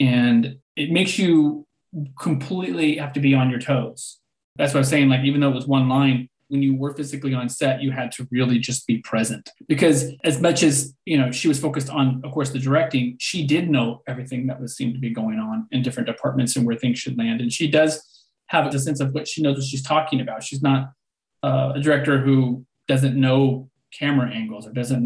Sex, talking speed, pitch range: male, 225 wpm, 130-150 Hz